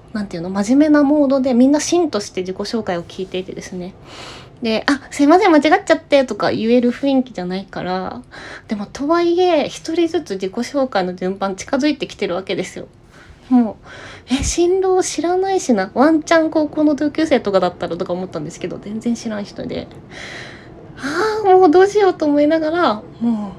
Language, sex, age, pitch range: Japanese, female, 20-39, 195-280 Hz